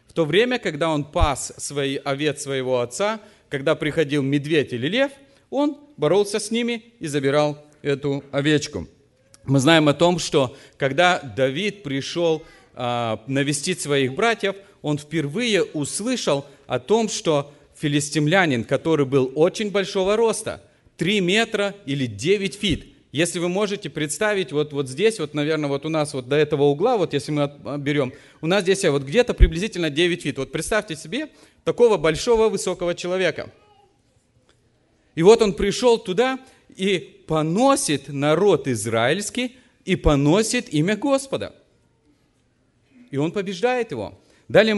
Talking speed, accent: 140 wpm, native